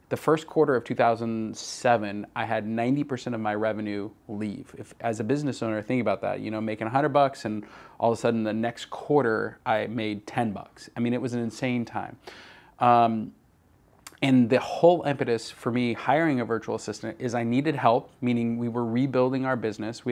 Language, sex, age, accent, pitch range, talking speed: English, male, 20-39, American, 115-135 Hz, 200 wpm